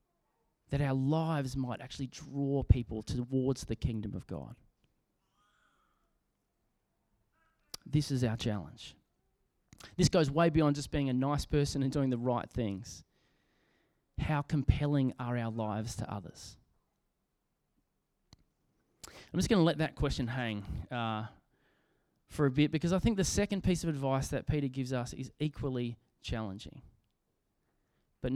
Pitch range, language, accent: 120-155 Hz, English, Australian